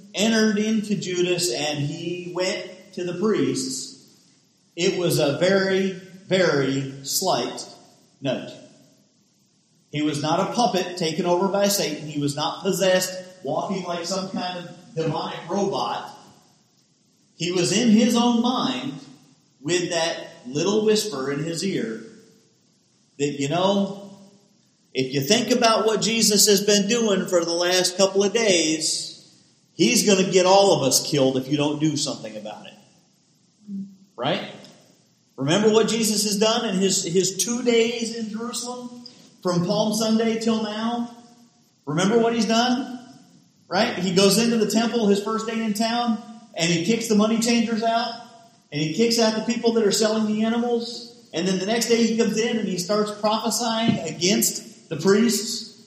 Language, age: English, 40-59